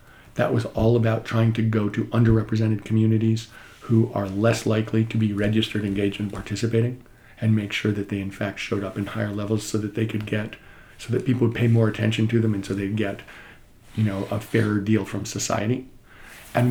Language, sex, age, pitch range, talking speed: English, male, 50-69, 105-115 Hz, 210 wpm